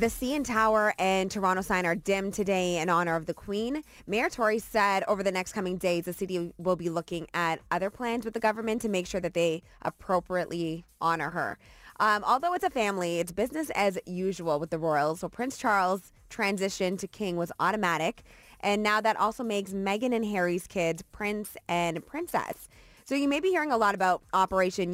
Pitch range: 170-215 Hz